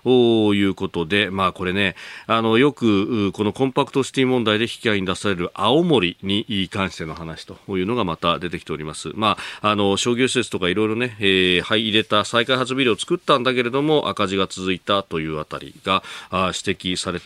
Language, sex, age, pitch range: Japanese, male, 40-59, 95-125 Hz